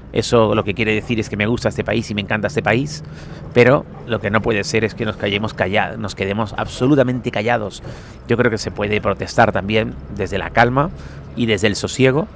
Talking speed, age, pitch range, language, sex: 215 wpm, 40-59, 110-130 Hz, Spanish, male